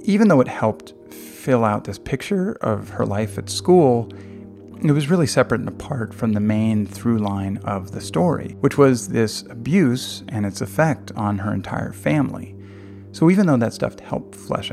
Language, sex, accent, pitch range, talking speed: English, male, American, 100-130 Hz, 180 wpm